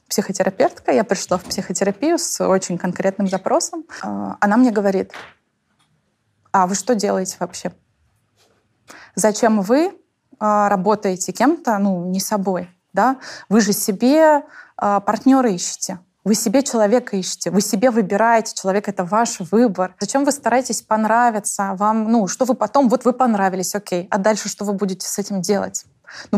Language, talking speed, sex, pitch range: Russian, 145 wpm, female, 195-235 Hz